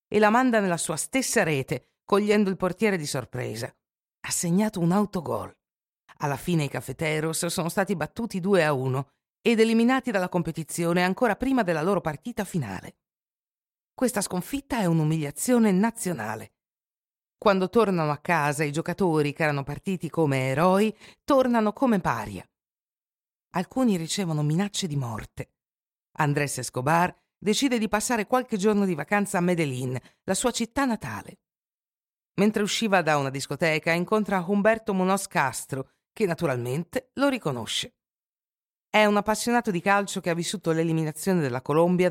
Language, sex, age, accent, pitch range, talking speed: Italian, female, 50-69, native, 150-215 Hz, 140 wpm